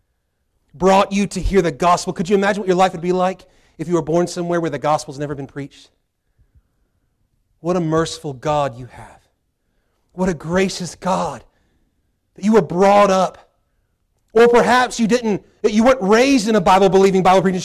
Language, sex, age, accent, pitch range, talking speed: English, male, 30-49, American, 125-195 Hz, 180 wpm